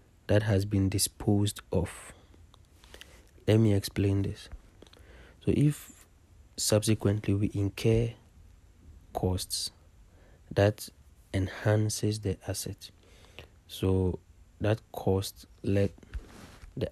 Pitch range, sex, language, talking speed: 90-100 Hz, male, English, 85 wpm